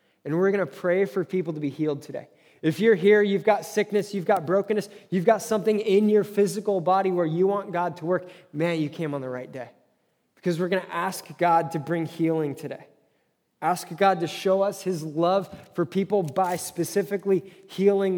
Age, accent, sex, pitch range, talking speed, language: 20-39, American, male, 170-205 Hz, 205 wpm, English